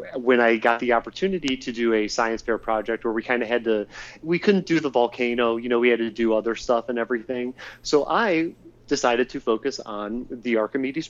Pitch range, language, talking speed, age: 115-155 Hz, English, 215 wpm, 30-49